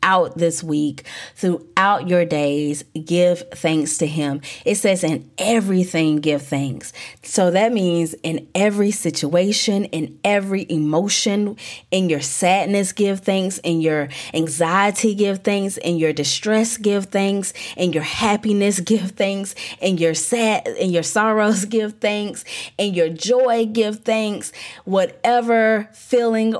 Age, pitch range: 30-49, 165-210 Hz